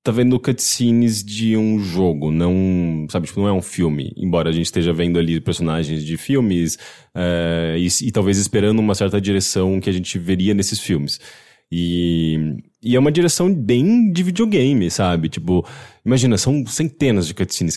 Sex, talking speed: male, 170 wpm